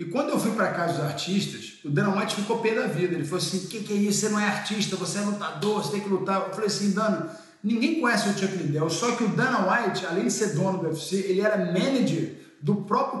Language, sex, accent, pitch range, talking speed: Portuguese, male, Brazilian, 185-235 Hz, 275 wpm